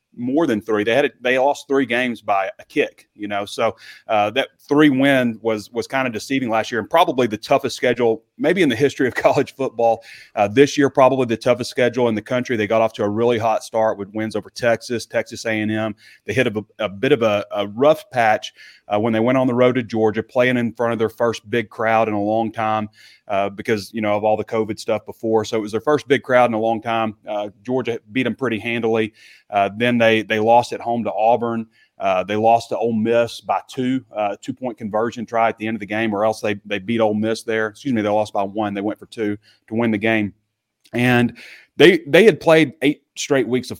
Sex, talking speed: male, 250 wpm